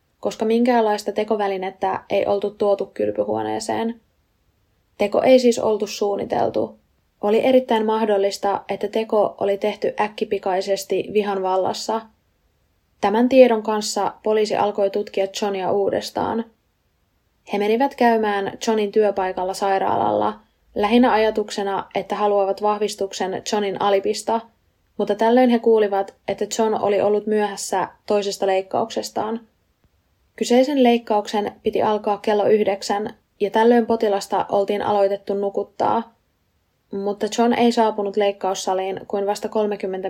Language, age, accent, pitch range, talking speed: Finnish, 20-39, native, 195-220 Hz, 110 wpm